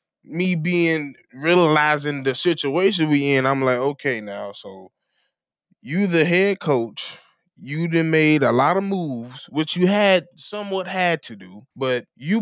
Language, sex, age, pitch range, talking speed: English, male, 20-39, 135-175 Hz, 155 wpm